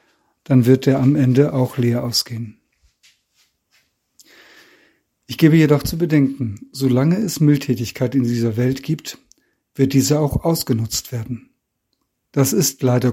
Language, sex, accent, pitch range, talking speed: German, male, German, 125-150 Hz, 130 wpm